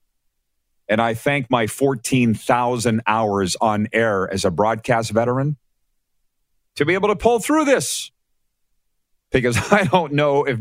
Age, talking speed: 50-69, 135 wpm